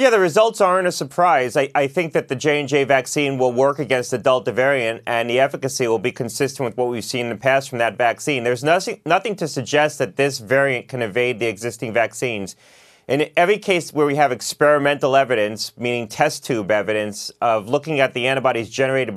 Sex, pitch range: male, 125-145 Hz